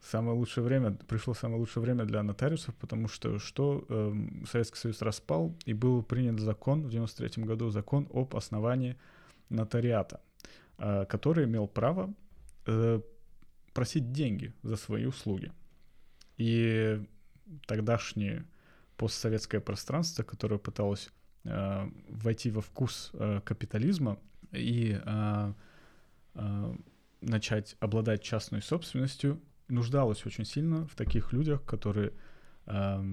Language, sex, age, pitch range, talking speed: Russian, male, 20-39, 105-125 Hz, 115 wpm